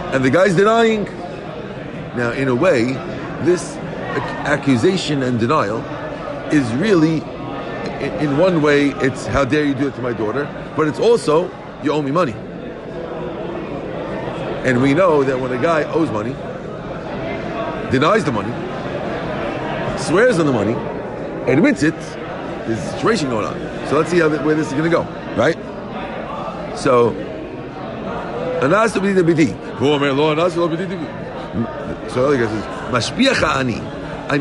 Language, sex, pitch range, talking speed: English, male, 125-170 Hz, 120 wpm